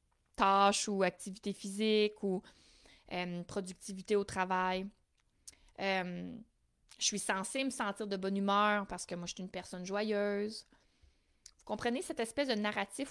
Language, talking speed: French, 145 wpm